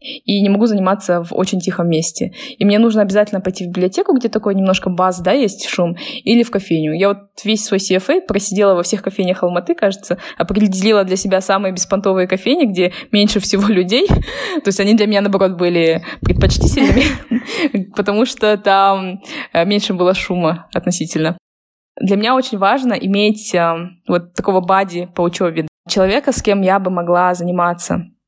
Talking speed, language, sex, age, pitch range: 165 wpm, Russian, female, 20-39, 185-210 Hz